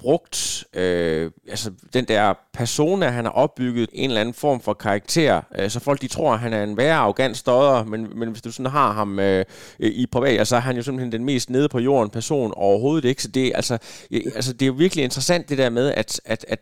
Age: 20-39